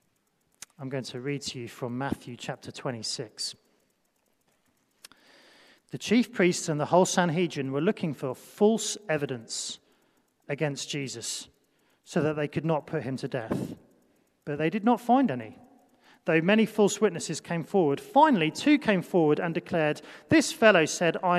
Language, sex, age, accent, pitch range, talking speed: English, male, 40-59, British, 150-215 Hz, 155 wpm